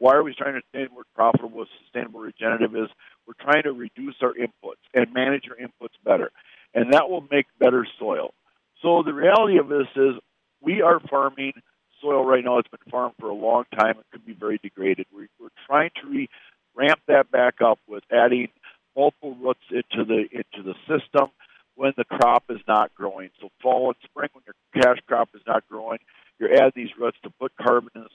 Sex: male